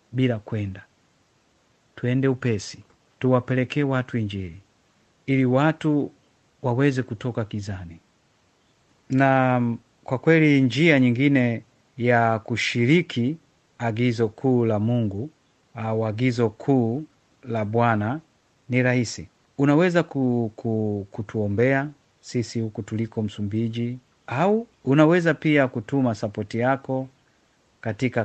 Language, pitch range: Swahili, 115-135 Hz